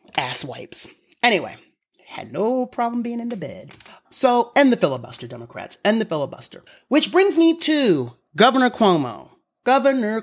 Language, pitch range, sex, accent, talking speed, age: English, 135-185 Hz, male, American, 145 wpm, 30-49